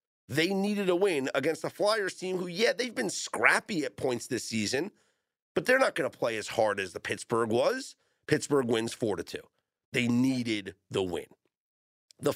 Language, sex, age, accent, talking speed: English, male, 40-59, American, 185 wpm